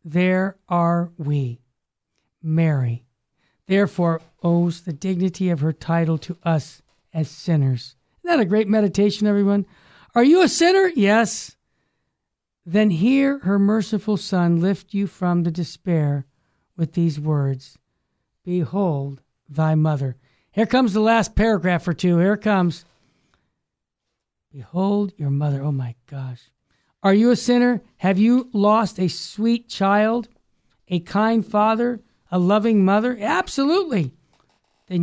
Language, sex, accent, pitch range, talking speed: English, male, American, 155-215 Hz, 130 wpm